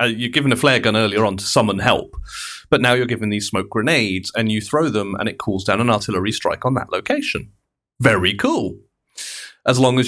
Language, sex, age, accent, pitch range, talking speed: English, male, 30-49, British, 105-150 Hz, 220 wpm